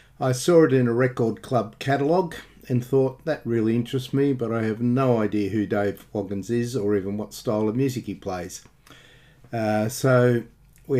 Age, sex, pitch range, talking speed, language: 50-69, male, 105-130 Hz, 185 wpm, English